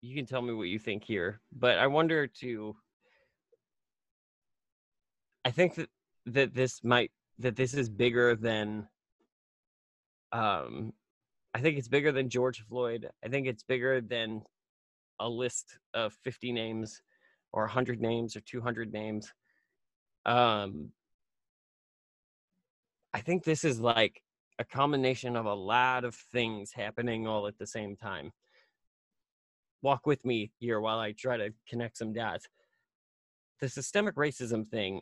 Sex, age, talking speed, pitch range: male, 20-39, 140 wpm, 110-130 Hz